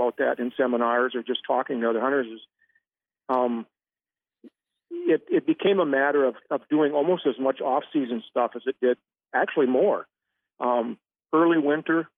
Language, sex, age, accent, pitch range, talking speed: English, male, 50-69, American, 125-145 Hz, 160 wpm